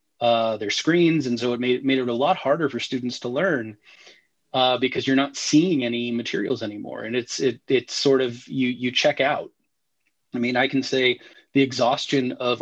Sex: male